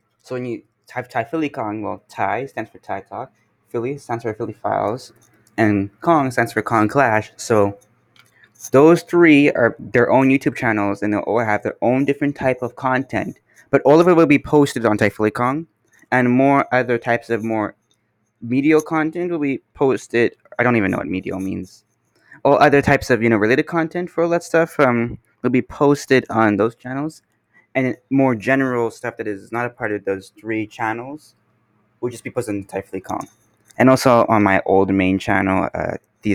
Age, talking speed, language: 20-39, 200 wpm, English